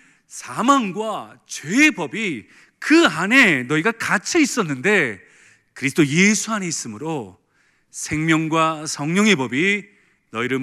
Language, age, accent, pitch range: Korean, 40-59, native, 165-270 Hz